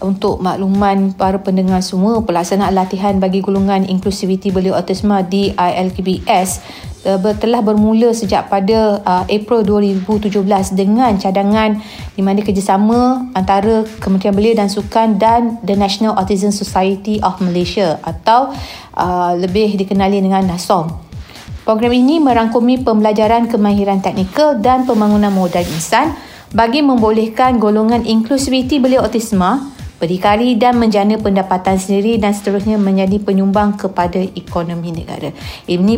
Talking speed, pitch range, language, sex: 125 wpm, 190-225 Hz, Malay, female